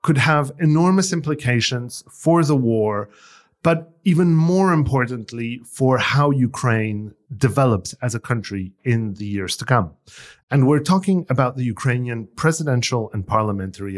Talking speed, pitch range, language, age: 135 wpm, 115-160 Hz, English, 40-59